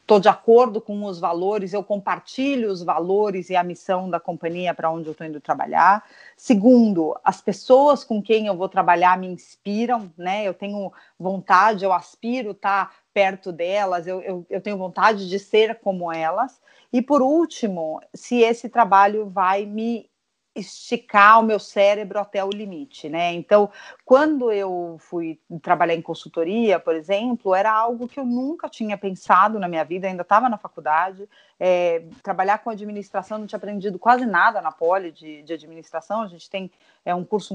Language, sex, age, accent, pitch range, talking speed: Portuguese, female, 40-59, Brazilian, 180-215 Hz, 170 wpm